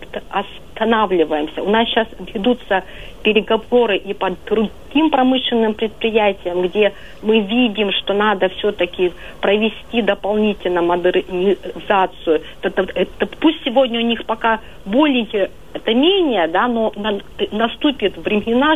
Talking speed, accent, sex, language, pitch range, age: 115 wpm, native, female, Russian, 185-230 Hz, 40-59